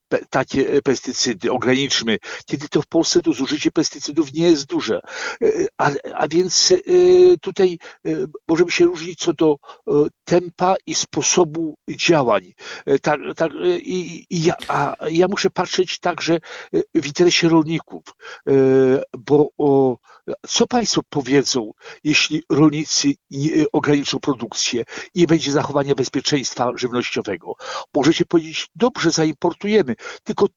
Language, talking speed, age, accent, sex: Polish, 130 wpm, 60-79, native, male